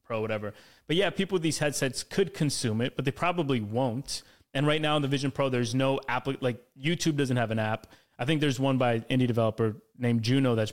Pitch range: 120-140 Hz